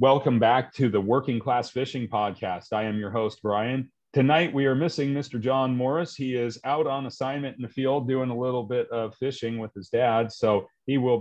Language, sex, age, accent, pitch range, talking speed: English, male, 40-59, American, 110-135 Hz, 215 wpm